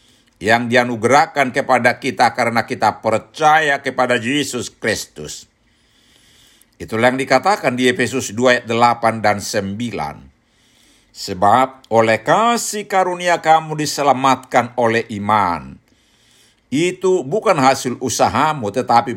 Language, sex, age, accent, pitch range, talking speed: Indonesian, male, 60-79, native, 110-140 Hz, 105 wpm